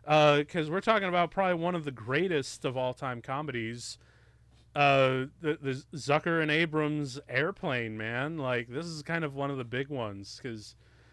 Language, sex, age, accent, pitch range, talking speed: English, male, 30-49, American, 120-165 Hz, 180 wpm